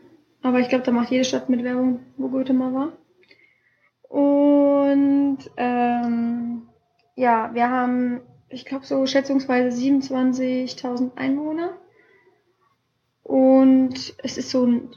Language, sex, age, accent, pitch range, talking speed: German, female, 20-39, German, 235-265 Hz, 110 wpm